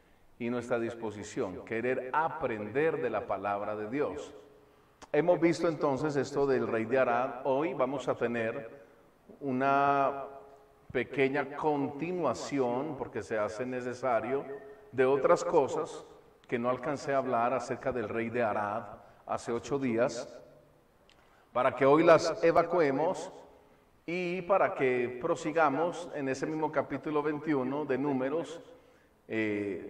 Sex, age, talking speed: male, 40-59, 125 wpm